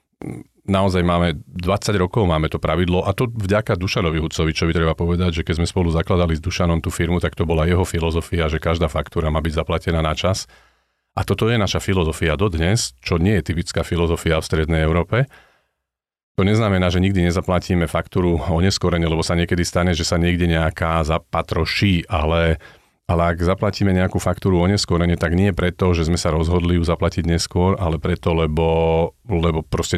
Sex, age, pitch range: male, 40-59, 80-95 Hz